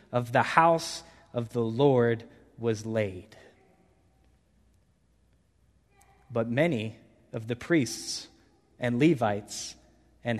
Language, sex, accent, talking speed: English, male, American, 90 wpm